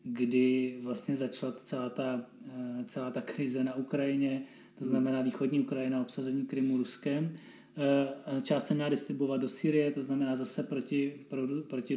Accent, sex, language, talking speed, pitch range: native, male, Czech, 140 wpm, 140-155 Hz